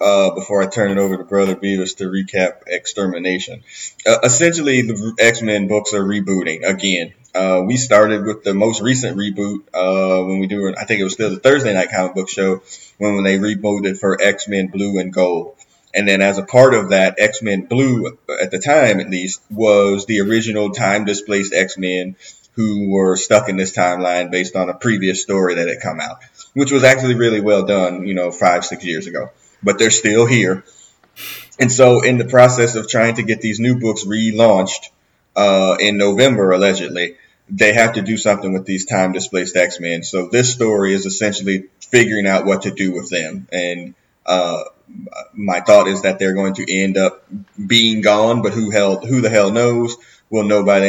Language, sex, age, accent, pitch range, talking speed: English, male, 30-49, American, 95-110 Hz, 195 wpm